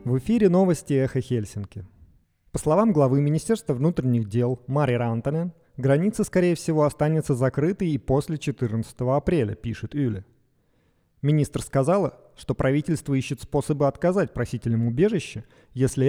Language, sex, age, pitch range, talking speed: Russian, male, 30-49, 120-155 Hz, 125 wpm